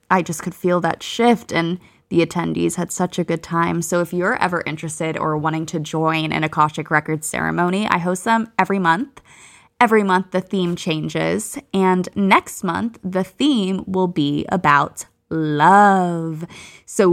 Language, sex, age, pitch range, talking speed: English, female, 20-39, 165-195 Hz, 165 wpm